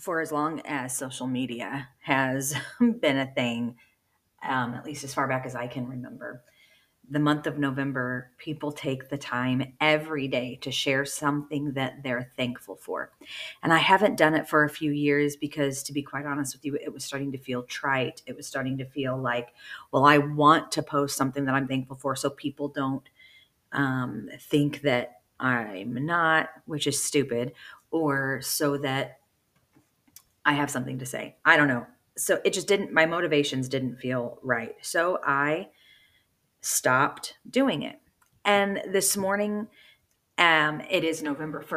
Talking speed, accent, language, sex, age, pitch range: 170 wpm, American, English, female, 40-59, 135-160 Hz